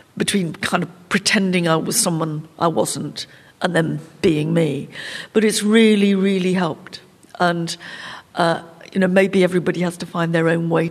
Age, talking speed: 60-79, 165 wpm